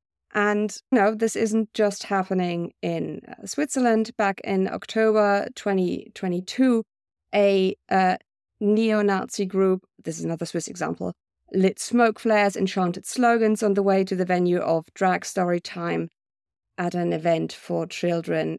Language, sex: English, female